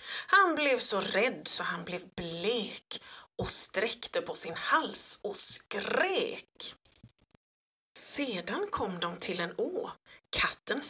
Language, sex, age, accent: Swedish, female, 30-49, native